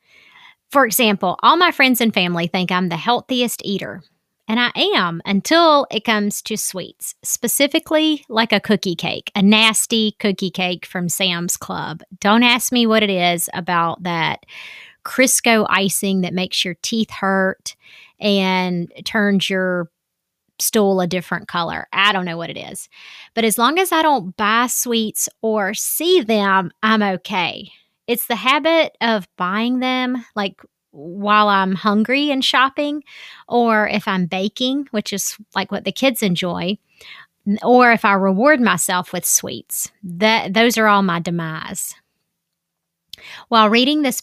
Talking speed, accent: 150 wpm, American